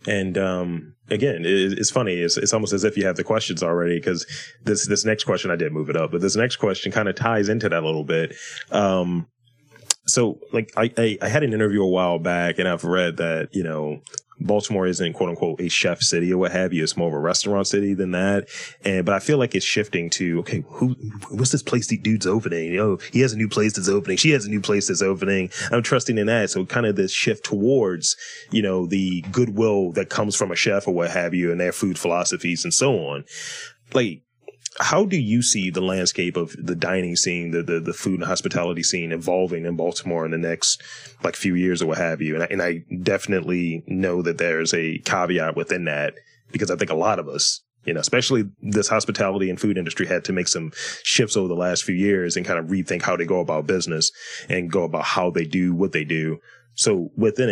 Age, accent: 30-49, American